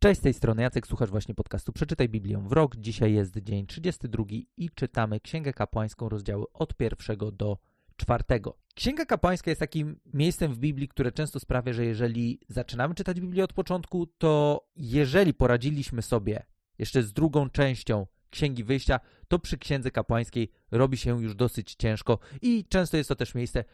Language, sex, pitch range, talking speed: Polish, male, 115-160 Hz, 170 wpm